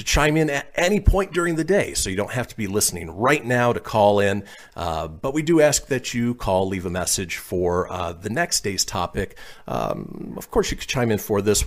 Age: 40-59